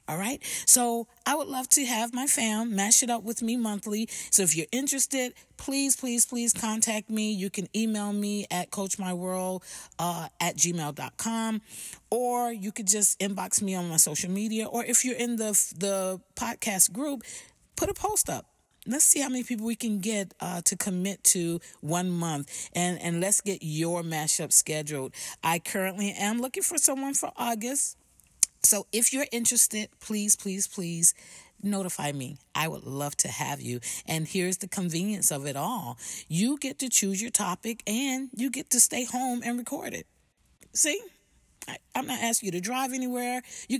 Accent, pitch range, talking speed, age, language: American, 170-235 Hz, 180 wpm, 40-59, English